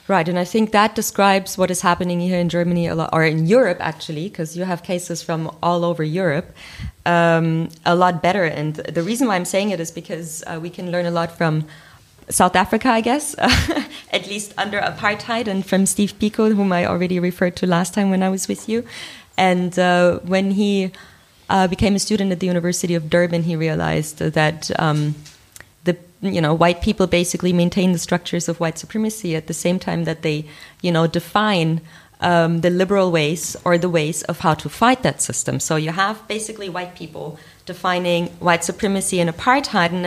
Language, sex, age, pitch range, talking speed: German, female, 20-39, 165-190 Hz, 195 wpm